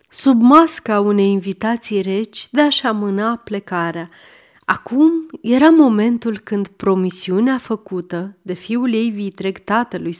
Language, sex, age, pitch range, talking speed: Romanian, female, 30-49, 195-250 Hz, 120 wpm